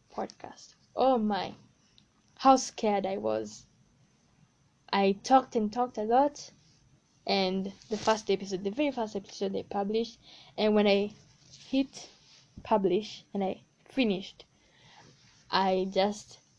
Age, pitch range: 10-29, 195-235 Hz